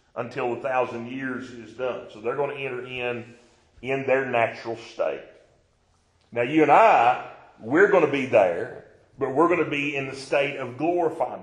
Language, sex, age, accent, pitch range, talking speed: English, male, 40-59, American, 115-140 Hz, 185 wpm